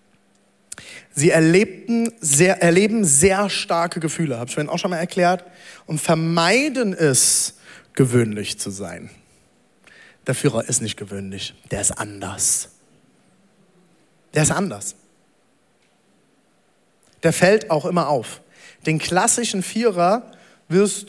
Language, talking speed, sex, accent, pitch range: German, 115 wpm, male, German, 165-205 Hz